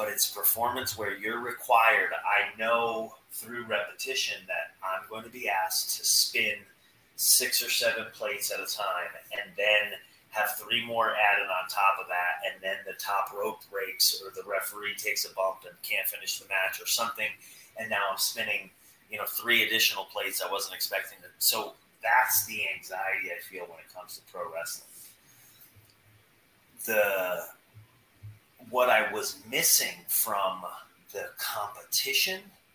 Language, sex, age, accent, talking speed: English, male, 30-49, American, 160 wpm